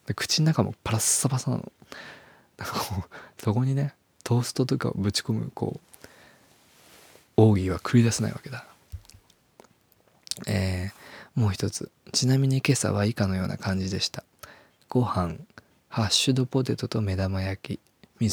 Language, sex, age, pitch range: Japanese, male, 20-39, 95-120 Hz